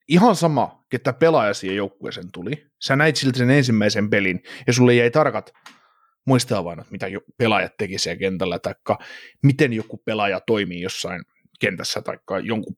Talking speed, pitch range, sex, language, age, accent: 155 wpm, 105-140 Hz, male, Finnish, 30-49, native